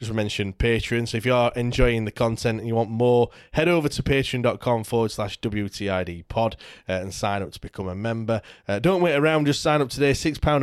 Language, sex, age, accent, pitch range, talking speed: English, male, 20-39, British, 105-135 Hz, 215 wpm